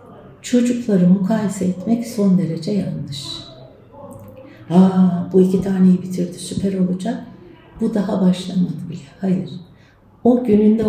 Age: 60-79